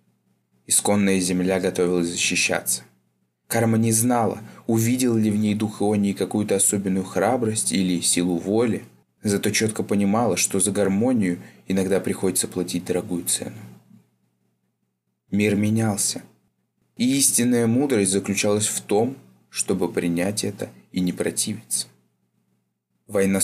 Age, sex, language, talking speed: 20-39, male, Russian, 115 wpm